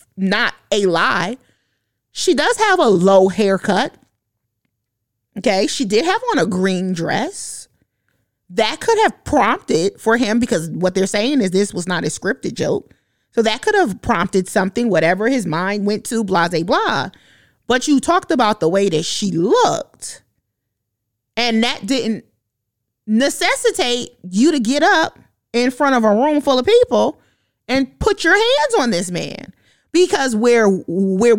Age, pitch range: 30-49, 190-300 Hz